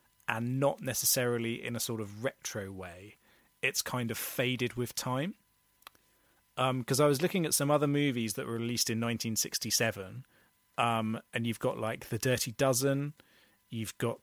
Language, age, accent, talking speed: English, 30-49, British, 165 wpm